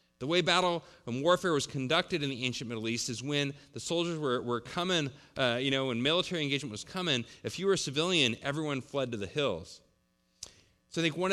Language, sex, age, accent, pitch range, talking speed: English, male, 30-49, American, 115-150 Hz, 215 wpm